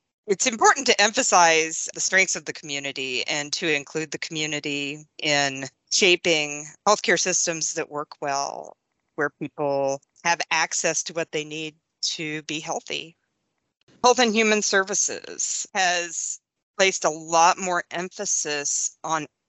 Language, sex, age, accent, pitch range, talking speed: English, female, 40-59, American, 145-175 Hz, 130 wpm